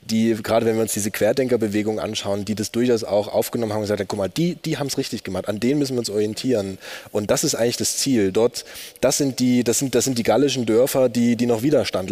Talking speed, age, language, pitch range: 260 wpm, 20-39, German, 105-120 Hz